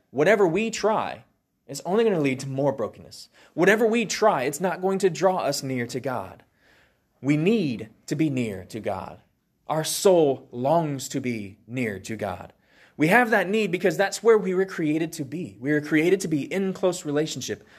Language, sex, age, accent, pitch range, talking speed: English, male, 20-39, American, 125-185 Hz, 195 wpm